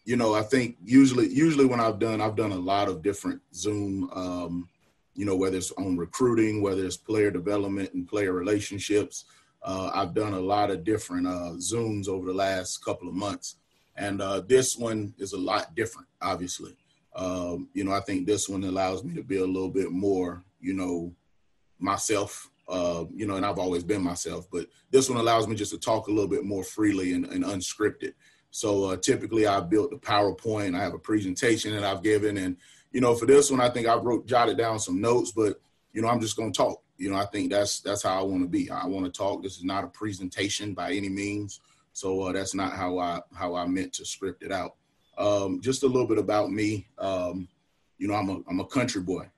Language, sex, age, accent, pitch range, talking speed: English, male, 30-49, American, 95-110 Hz, 220 wpm